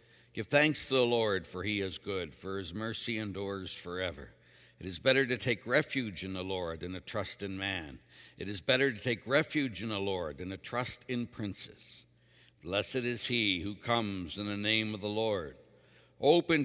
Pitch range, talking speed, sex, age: 95-125 Hz, 195 wpm, male, 60-79